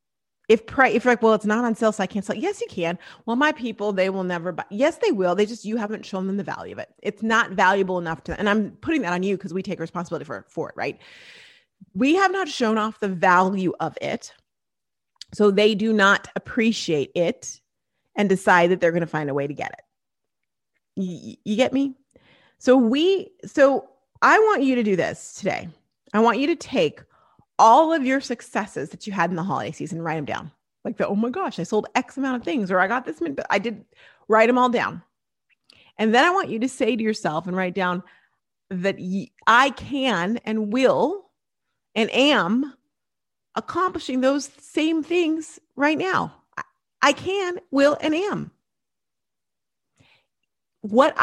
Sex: female